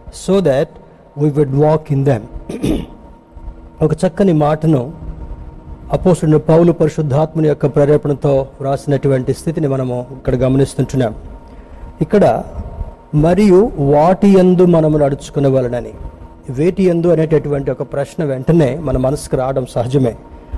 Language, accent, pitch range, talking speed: Telugu, native, 130-165 Hz, 115 wpm